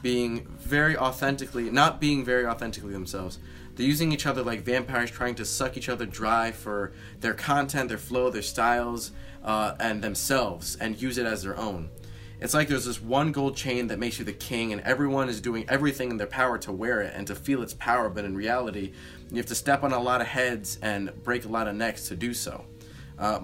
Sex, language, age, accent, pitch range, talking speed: male, English, 20-39, American, 105-130 Hz, 220 wpm